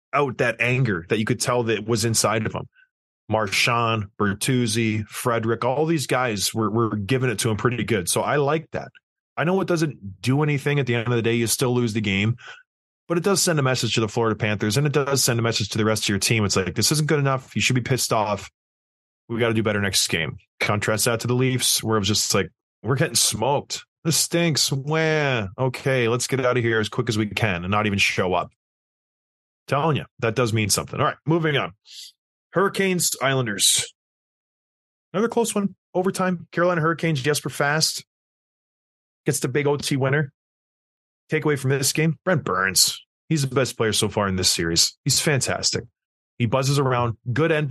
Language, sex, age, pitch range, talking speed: English, male, 20-39, 110-145 Hz, 210 wpm